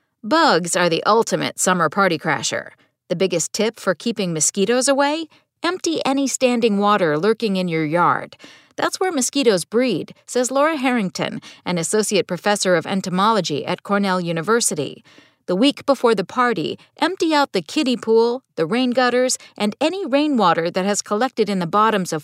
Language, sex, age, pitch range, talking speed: English, female, 50-69, 180-265 Hz, 160 wpm